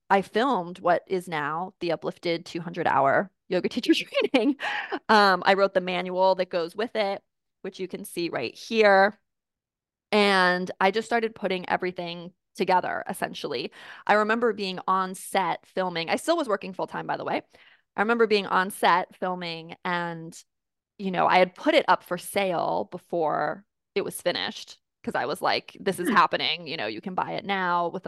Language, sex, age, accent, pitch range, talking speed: English, female, 20-39, American, 180-210 Hz, 175 wpm